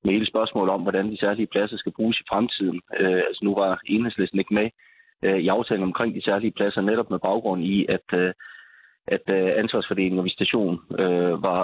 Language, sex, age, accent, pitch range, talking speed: Danish, male, 30-49, native, 90-105 Hz, 185 wpm